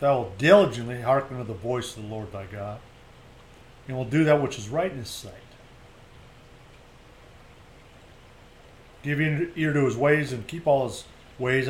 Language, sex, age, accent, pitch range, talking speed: English, male, 50-69, American, 120-155 Hz, 165 wpm